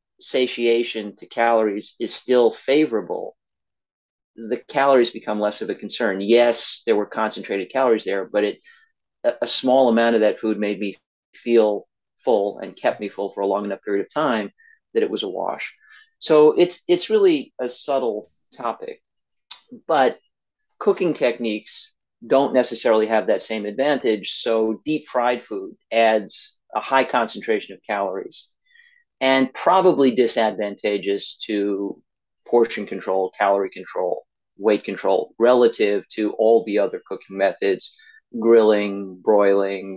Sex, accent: male, American